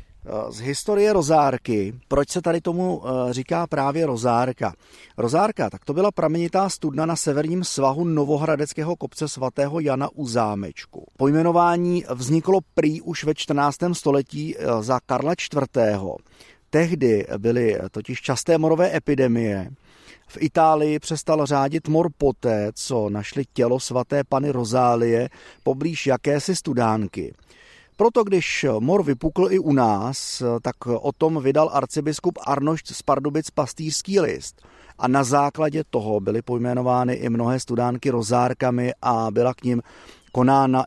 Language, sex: Czech, male